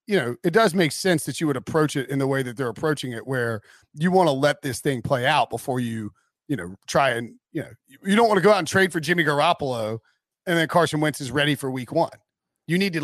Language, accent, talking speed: English, American, 265 wpm